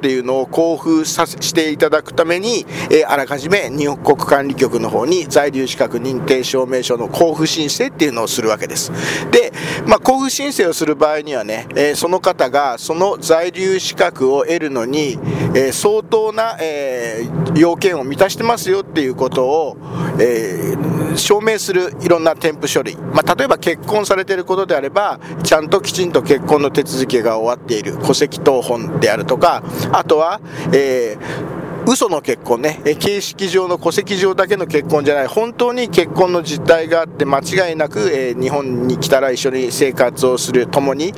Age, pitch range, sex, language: 50-69, 135-185 Hz, male, Japanese